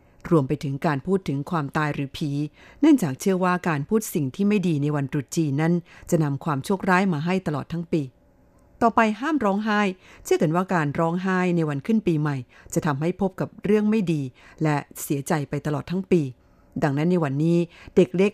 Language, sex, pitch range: Thai, female, 145-185 Hz